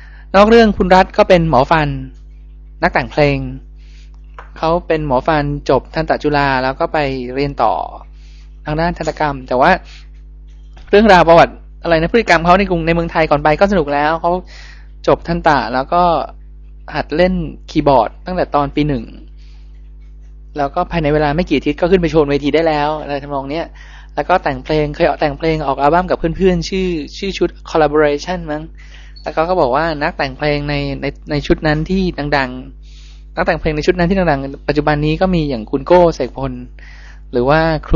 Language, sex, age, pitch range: Thai, male, 20-39, 135-175 Hz